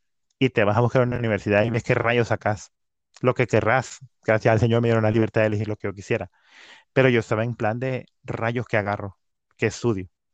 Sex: male